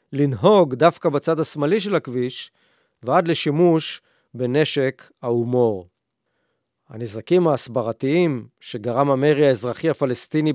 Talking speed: 90 wpm